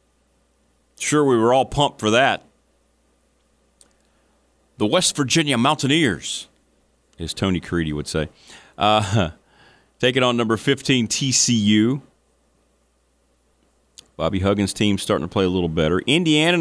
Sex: male